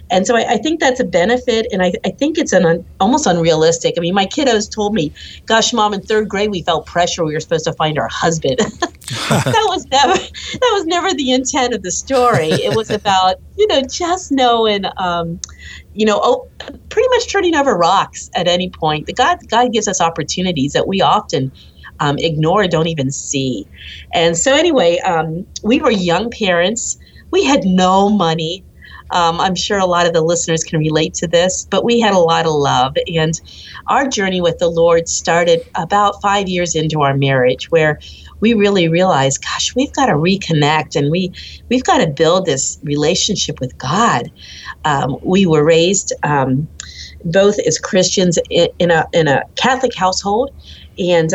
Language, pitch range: English, 165-230 Hz